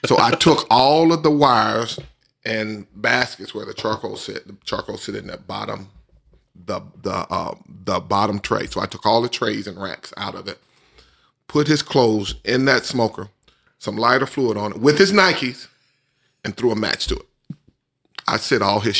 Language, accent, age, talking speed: English, American, 30-49, 190 wpm